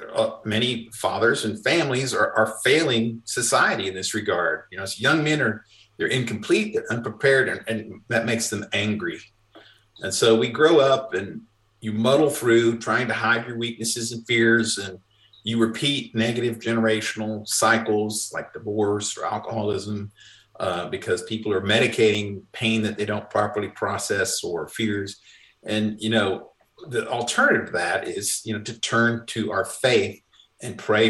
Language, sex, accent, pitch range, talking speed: English, male, American, 110-120 Hz, 160 wpm